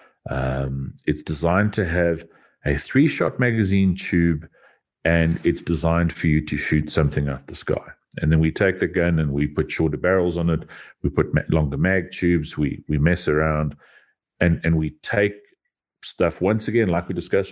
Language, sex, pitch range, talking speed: English, male, 75-95 Hz, 180 wpm